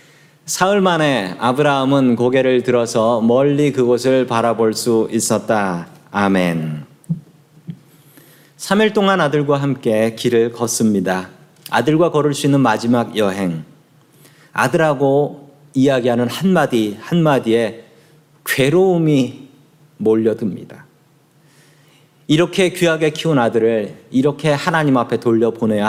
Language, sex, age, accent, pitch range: Korean, male, 40-59, native, 115-155 Hz